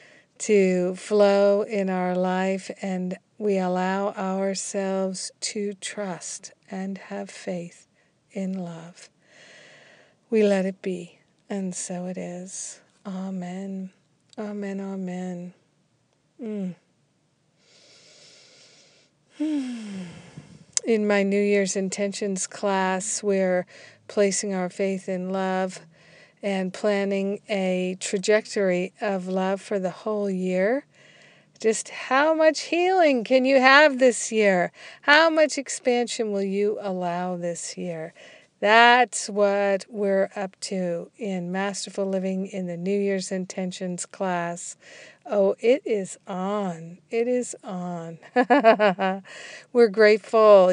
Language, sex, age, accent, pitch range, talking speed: English, female, 50-69, American, 185-210 Hz, 105 wpm